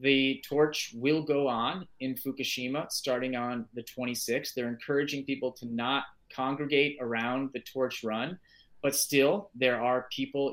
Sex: male